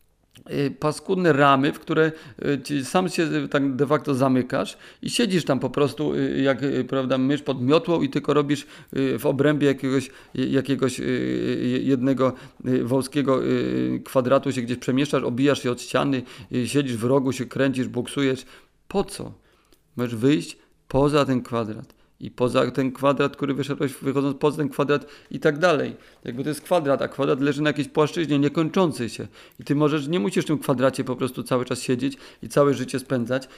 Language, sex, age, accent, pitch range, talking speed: Polish, male, 40-59, native, 130-145 Hz, 165 wpm